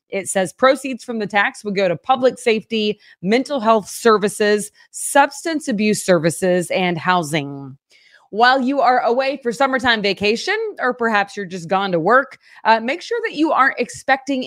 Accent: American